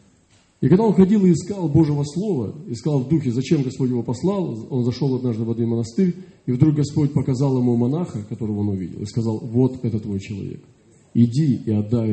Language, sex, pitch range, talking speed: Russian, male, 115-150 Hz, 195 wpm